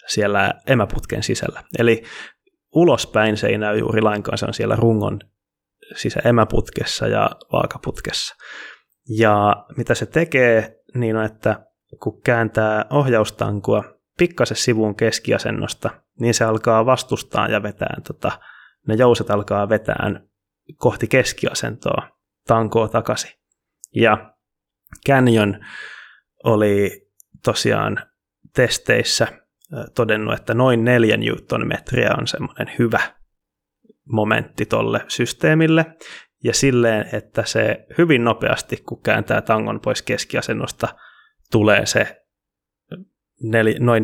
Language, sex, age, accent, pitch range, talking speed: Finnish, male, 20-39, native, 105-120 Hz, 105 wpm